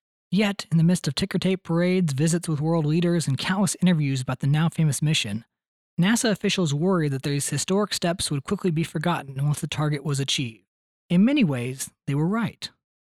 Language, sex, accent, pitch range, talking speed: English, male, American, 150-185 Hz, 185 wpm